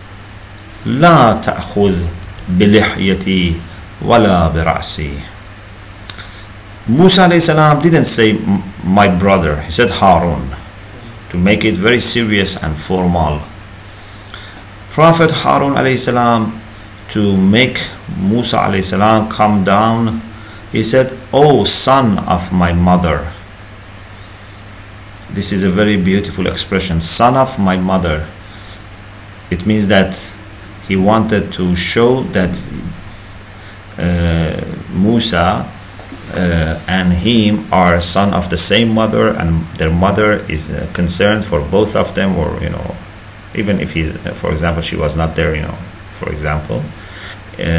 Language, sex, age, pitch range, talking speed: English, male, 50-69, 90-105 Hz, 105 wpm